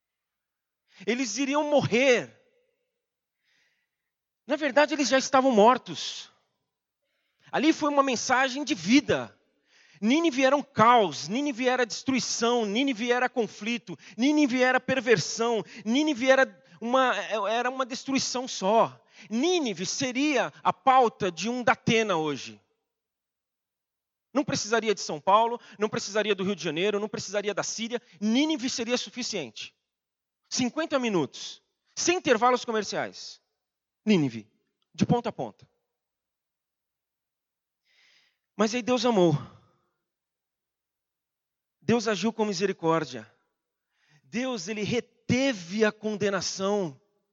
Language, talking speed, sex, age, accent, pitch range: Portuguese, 105 wpm, male, 40-59, Brazilian, 205-265 Hz